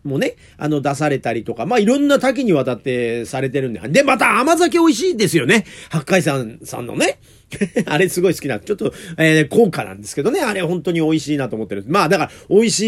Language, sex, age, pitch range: Japanese, male, 40-59, 125-210 Hz